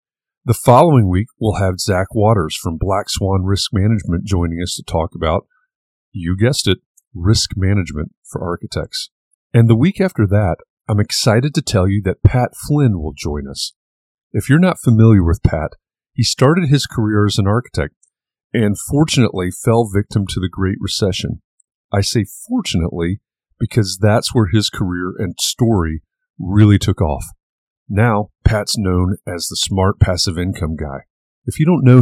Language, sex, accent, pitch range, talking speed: English, male, American, 90-115 Hz, 165 wpm